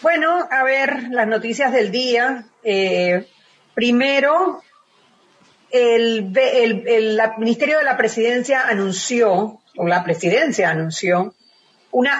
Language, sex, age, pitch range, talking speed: Spanish, female, 40-59, 205-250 Hz, 115 wpm